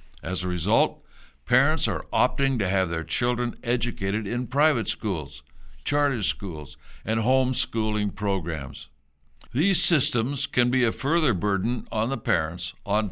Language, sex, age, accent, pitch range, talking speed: English, male, 60-79, American, 95-130 Hz, 135 wpm